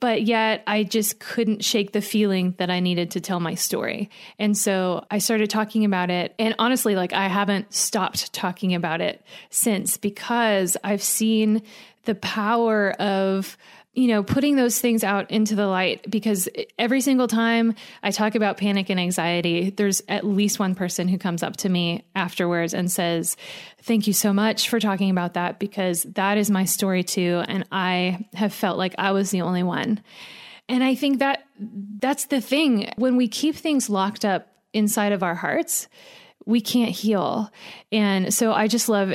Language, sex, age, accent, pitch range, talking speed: English, female, 20-39, American, 190-225 Hz, 180 wpm